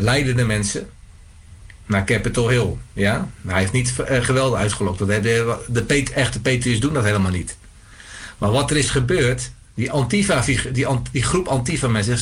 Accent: Dutch